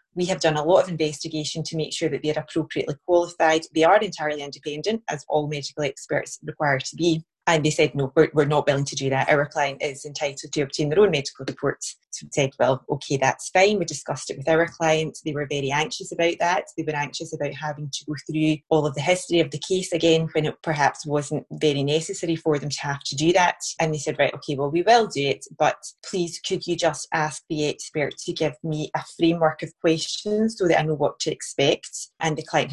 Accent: British